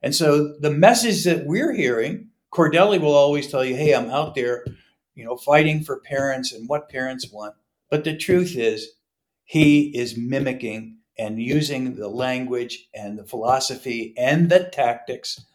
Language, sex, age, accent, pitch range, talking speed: English, male, 60-79, American, 115-150 Hz, 160 wpm